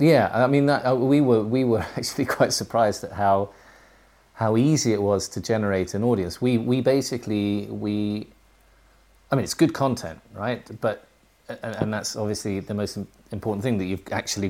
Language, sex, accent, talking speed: English, male, British, 180 wpm